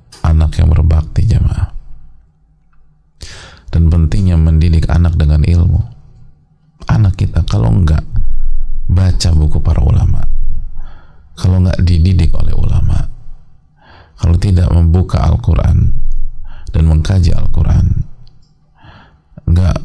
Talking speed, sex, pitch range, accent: 95 wpm, male, 85-115 Hz, Indonesian